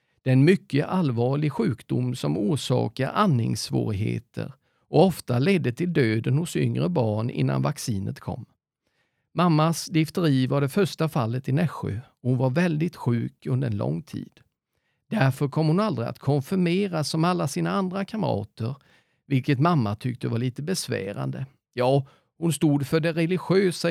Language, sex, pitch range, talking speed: Swedish, male, 125-165 Hz, 150 wpm